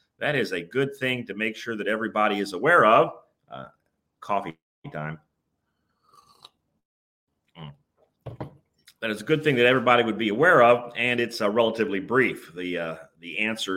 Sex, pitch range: male, 95-125 Hz